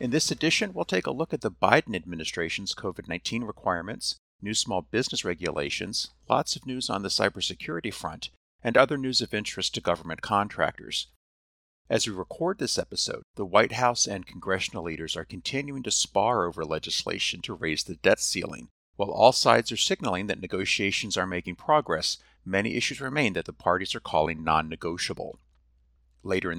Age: 50-69